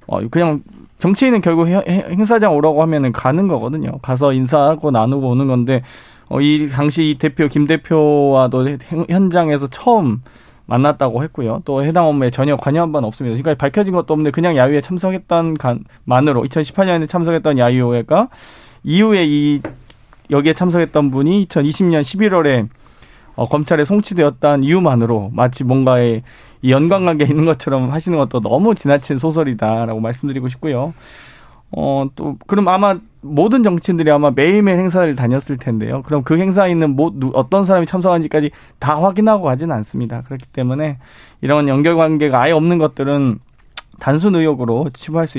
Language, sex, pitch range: Korean, male, 130-175 Hz